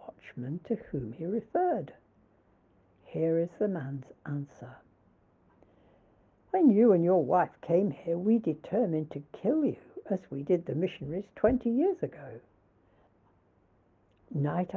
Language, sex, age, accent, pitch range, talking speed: English, female, 60-79, British, 135-205 Hz, 120 wpm